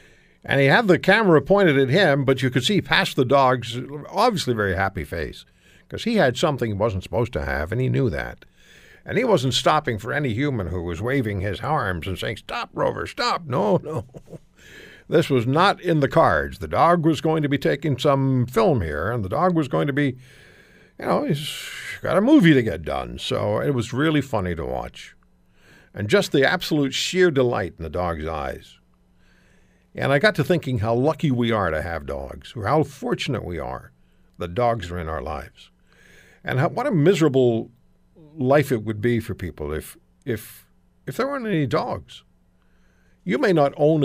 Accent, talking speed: American, 195 wpm